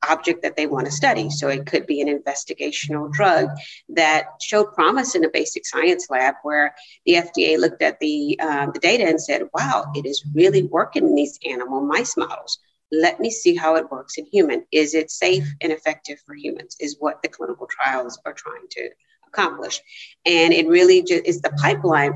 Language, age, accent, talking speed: English, 40-59, American, 190 wpm